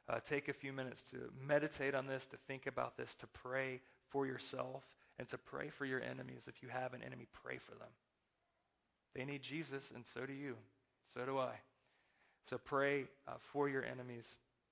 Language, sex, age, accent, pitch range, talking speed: English, male, 30-49, American, 120-135 Hz, 190 wpm